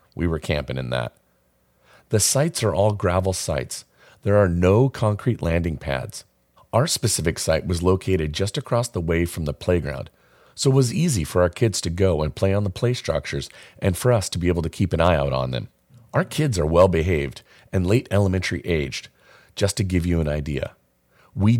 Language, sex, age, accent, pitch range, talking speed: English, male, 40-59, American, 80-105 Hz, 200 wpm